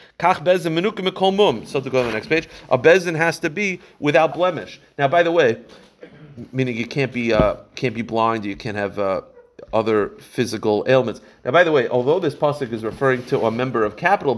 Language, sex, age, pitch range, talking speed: English, male, 40-59, 120-170 Hz, 195 wpm